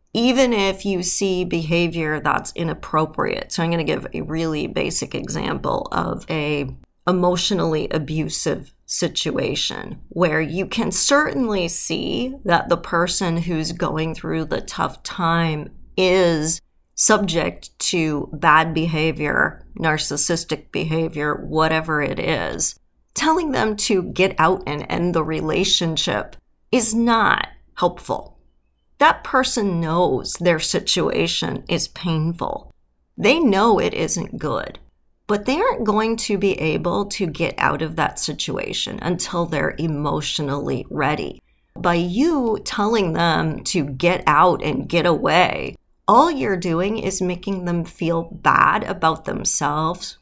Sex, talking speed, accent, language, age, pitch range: female, 125 wpm, American, English, 40-59, 155-195 Hz